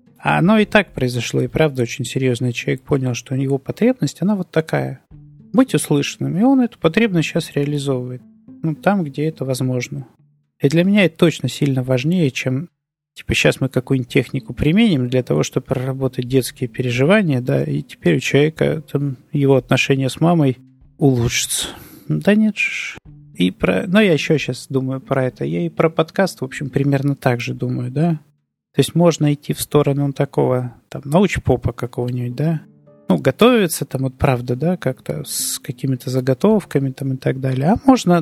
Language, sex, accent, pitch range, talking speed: Russian, male, native, 130-160 Hz, 175 wpm